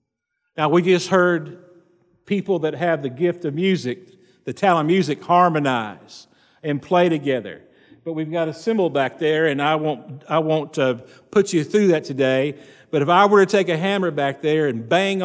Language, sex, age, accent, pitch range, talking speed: English, male, 50-69, American, 140-190 Hz, 195 wpm